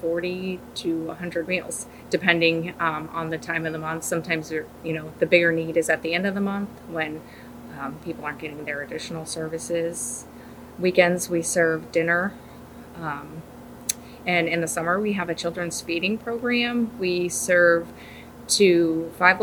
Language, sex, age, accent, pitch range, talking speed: English, female, 20-39, American, 165-180 Hz, 160 wpm